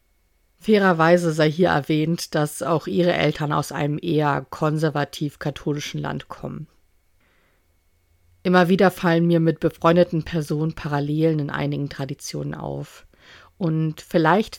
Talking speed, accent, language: 115 wpm, German, German